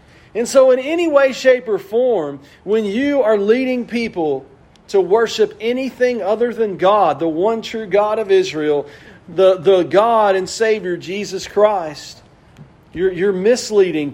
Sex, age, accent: male, 40-59, American